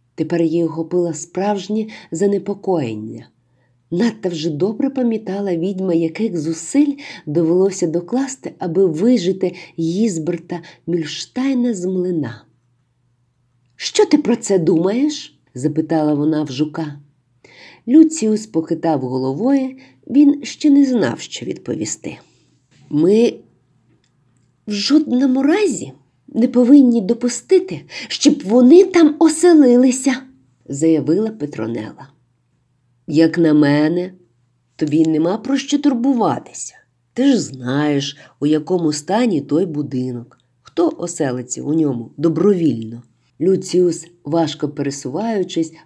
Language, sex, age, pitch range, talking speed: Ukrainian, female, 50-69, 140-230 Hz, 100 wpm